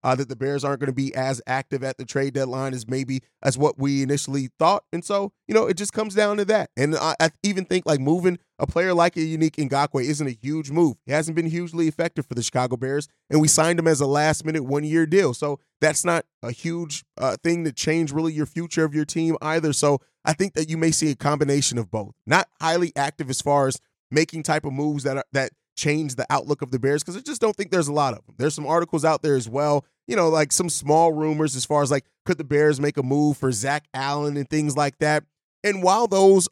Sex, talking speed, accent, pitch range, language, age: male, 260 wpm, American, 140-165 Hz, English, 30-49